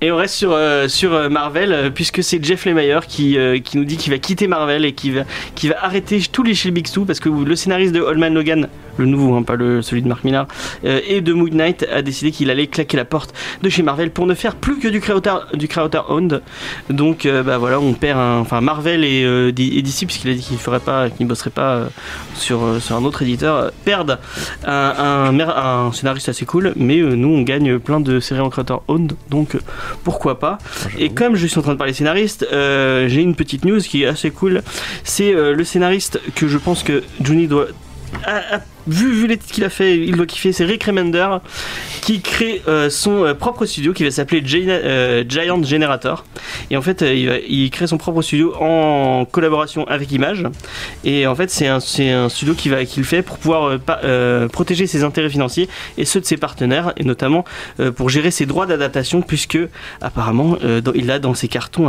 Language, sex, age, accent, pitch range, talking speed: French, male, 30-49, French, 135-175 Hz, 225 wpm